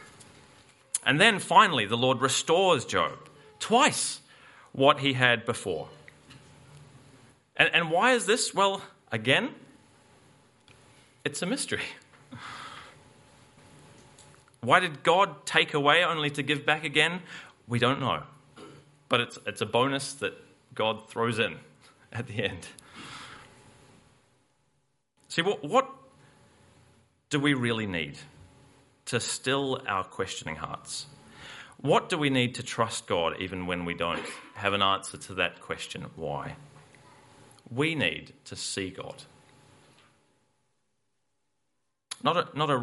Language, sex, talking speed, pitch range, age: English, male, 120 wpm, 115-145 Hz, 30-49